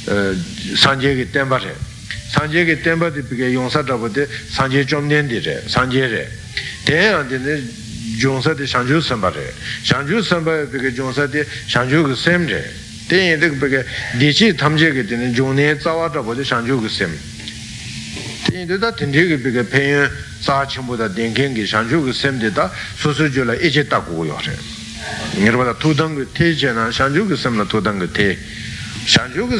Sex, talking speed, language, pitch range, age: male, 105 wpm, Italian, 120-155 Hz, 60-79